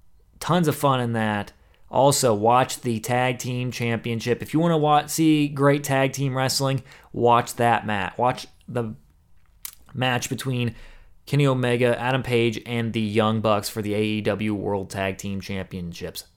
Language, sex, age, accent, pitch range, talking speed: English, male, 20-39, American, 110-145 Hz, 160 wpm